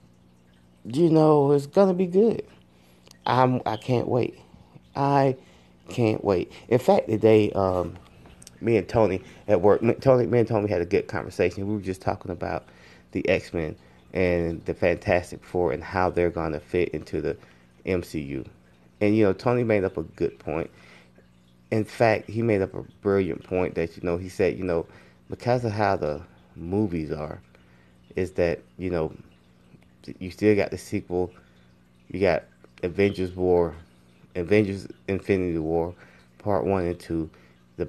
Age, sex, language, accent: 30-49, male, English, American